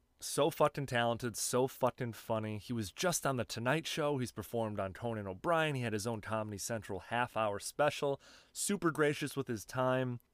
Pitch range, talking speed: 115-135 Hz, 180 wpm